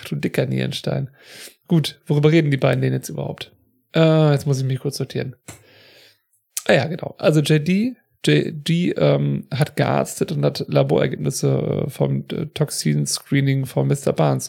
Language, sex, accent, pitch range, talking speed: German, male, German, 130-155 Hz, 145 wpm